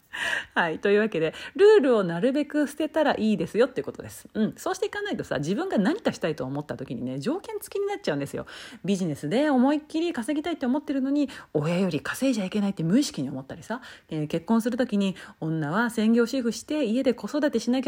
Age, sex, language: 40-59, female, Japanese